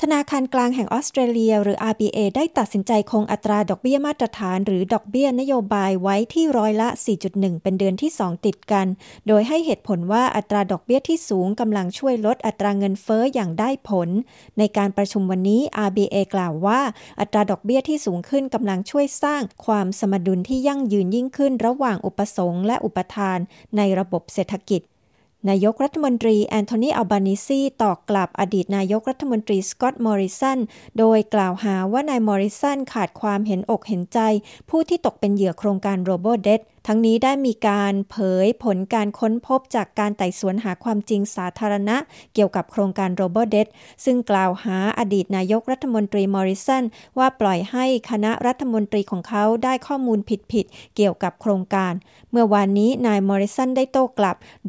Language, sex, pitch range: Thai, female, 195-235 Hz